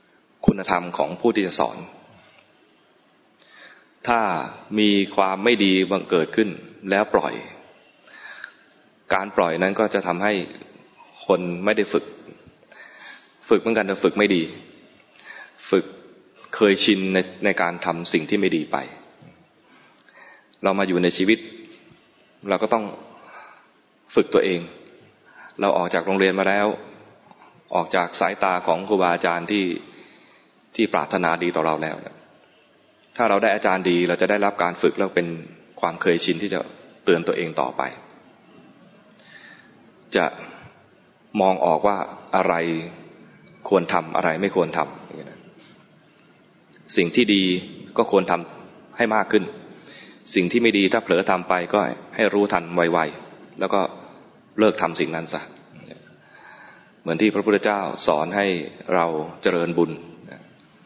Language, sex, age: English, male, 20-39